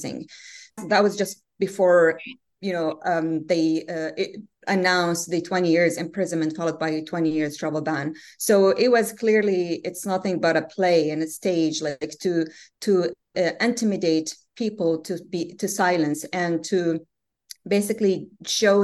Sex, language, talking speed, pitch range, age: female, English, 145 wpm, 165-200 Hz, 30-49